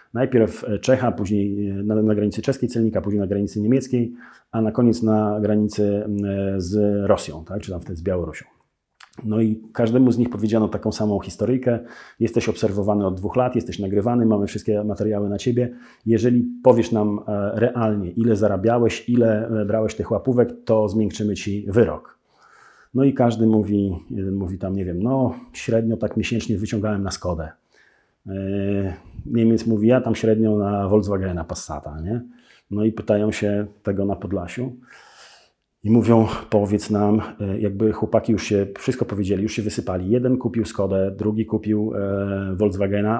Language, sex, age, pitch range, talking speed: Polish, male, 40-59, 100-120 Hz, 155 wpm